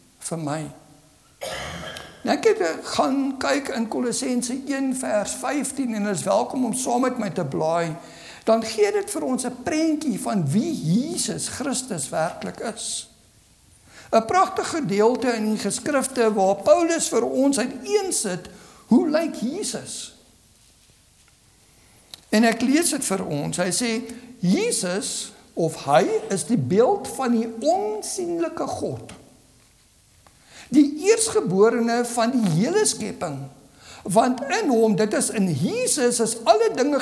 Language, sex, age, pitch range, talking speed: English, male, 60-79, 195-285 Hz, 135 wpm